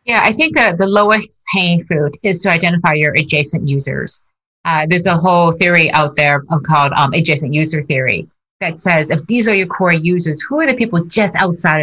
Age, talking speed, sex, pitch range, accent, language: 50-69, 205 wpm, female, 160-215 Hz, American, English